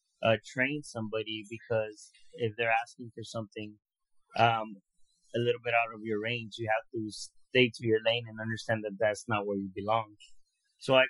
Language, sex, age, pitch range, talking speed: English, male, 30-49, 110-130 Hz, 185 wpm